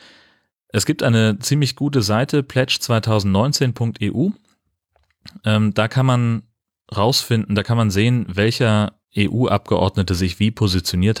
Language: German